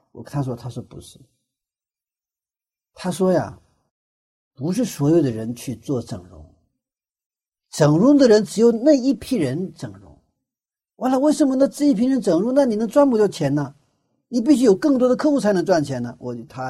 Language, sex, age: Chinese, male, 50-69